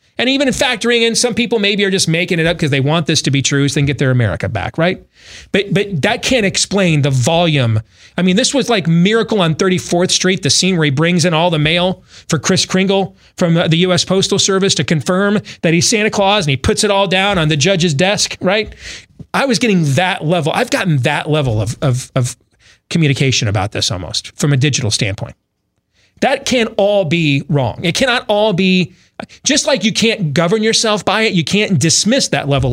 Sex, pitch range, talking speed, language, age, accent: male, 140-205 Hz, 220 wpm, English, 30-49, American